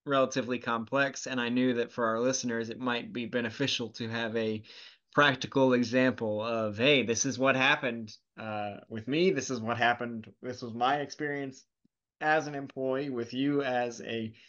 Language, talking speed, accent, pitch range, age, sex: English, 175 wpm, American, 120-140 Hz, 20-39, male